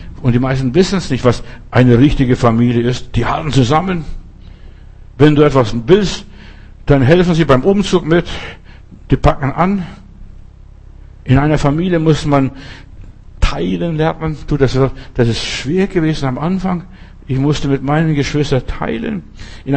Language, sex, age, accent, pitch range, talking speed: German, male, 60-79, German, 125-160 Hz, 150 wpm